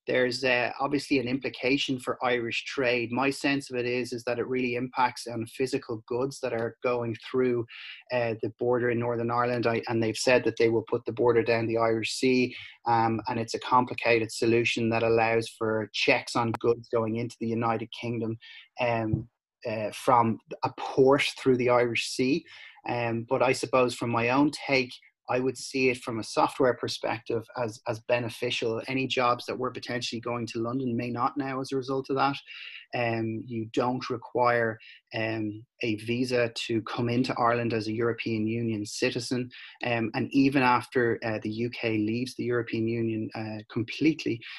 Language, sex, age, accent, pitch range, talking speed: English, male, 30-49, Irish, 115-125 Hz, 180 wpm